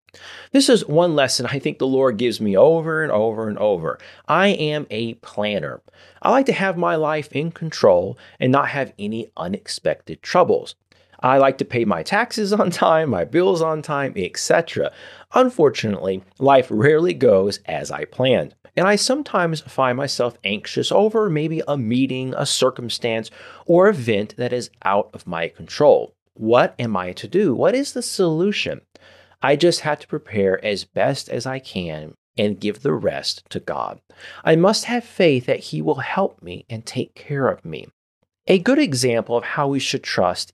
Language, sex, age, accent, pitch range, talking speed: English, male, 30-49, American, 115-185 Hz, 180 wpm